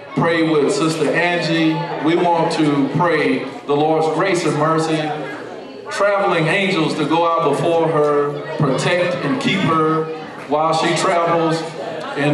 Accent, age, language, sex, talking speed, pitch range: American, 40-59, English, male, 135 wpm, 160-195 Hz